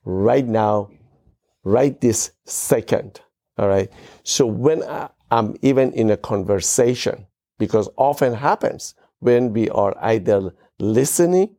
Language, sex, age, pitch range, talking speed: English, male, 60-79, 110-135 Hz, 120 wpm